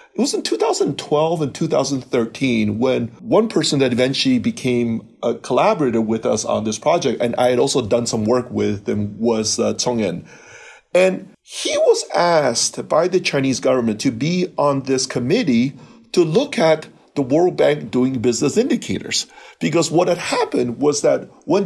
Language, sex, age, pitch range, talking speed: English, male, 40-59, 120-180 Hz, 170 wpm